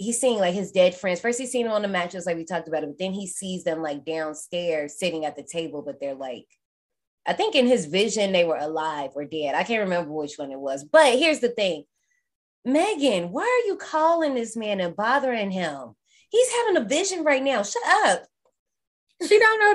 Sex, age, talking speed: female, 20-39, 220 wpm